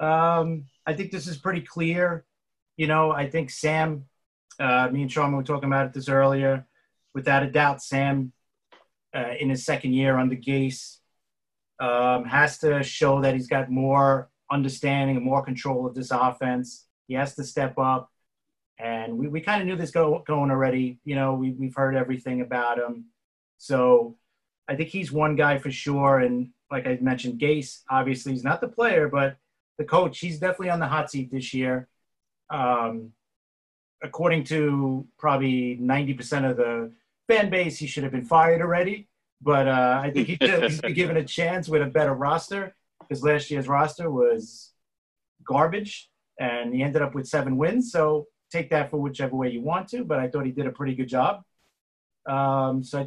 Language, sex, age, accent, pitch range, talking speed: English, male, 30-49, American, 130-155 Hz, 190 wpm